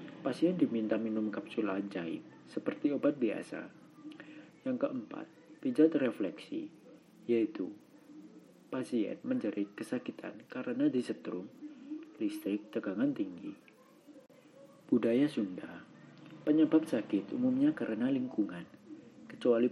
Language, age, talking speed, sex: Indonesian, 40-59, 90 wpm, male